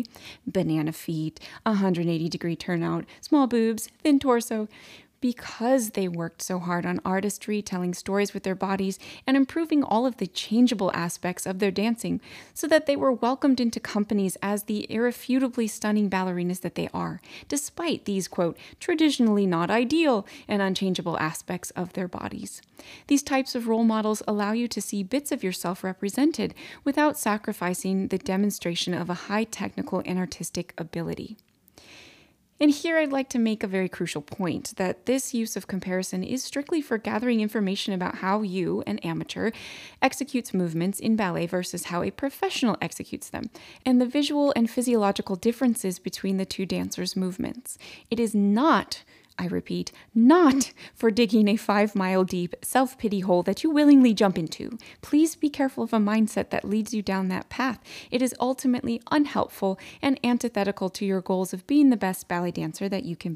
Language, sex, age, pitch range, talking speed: English, female, 20-39, 185-250 Hz, 165 wpm